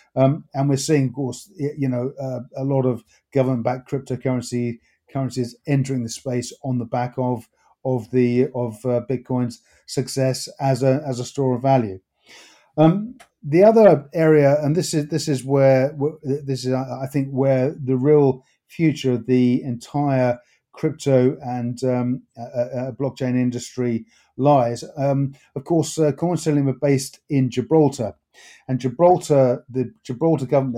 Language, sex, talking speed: English, male, 150 wpm